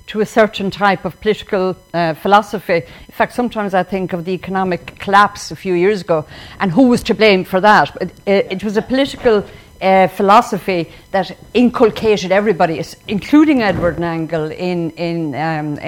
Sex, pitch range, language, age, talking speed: female, 170-200 Hz, English, 50-69, 170 wpm